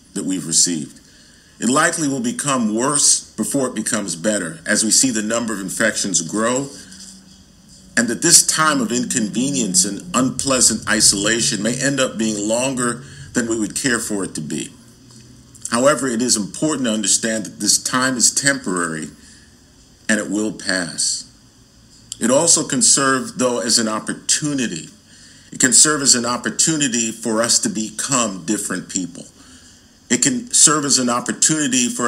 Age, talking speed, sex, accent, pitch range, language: 50-69, 155 wpm, male, American, 100-125 Hz, English